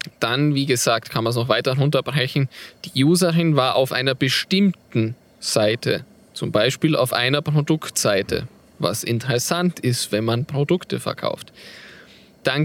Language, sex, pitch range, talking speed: German, male, 125-160 Hz, 140 wpm